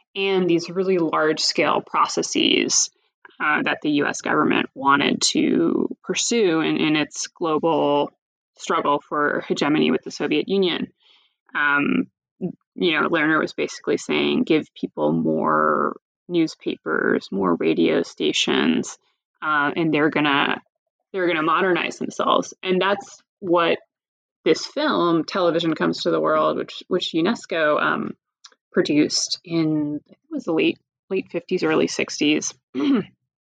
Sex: female